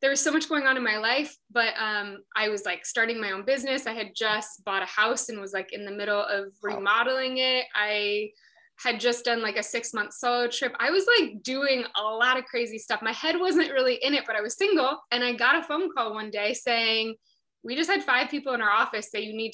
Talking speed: 250 wpm